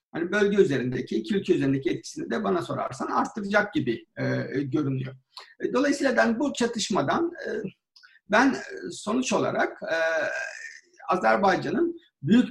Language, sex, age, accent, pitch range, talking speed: Turkish, male, 60-79, native, 180-255 Hz, 115 wpm